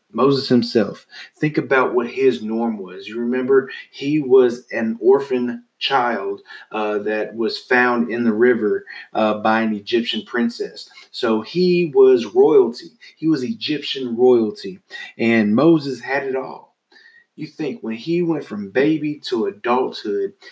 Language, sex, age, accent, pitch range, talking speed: English, male, 30-49, American, 115-145 Hz, 145 wpm